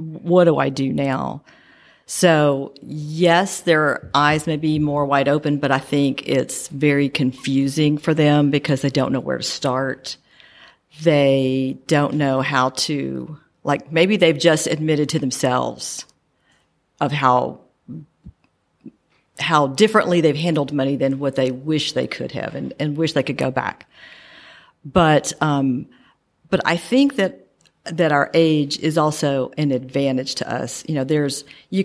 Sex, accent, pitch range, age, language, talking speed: female, American, 135-165 Hz, 50-69, English, 155 wpm